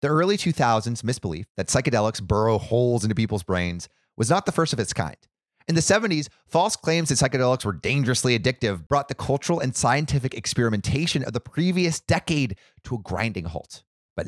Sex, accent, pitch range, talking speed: male, American, 110-150 Hz, 180 wpm